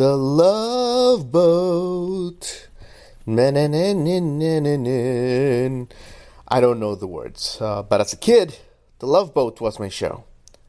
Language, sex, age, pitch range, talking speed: English, male, 30-49, 105-160 Hz, 105 wpm